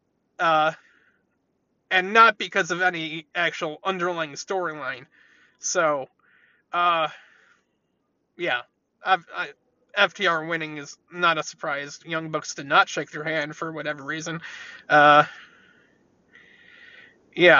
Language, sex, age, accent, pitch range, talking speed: English, male, 20-39, American, 165-245 Hz, 110 wpm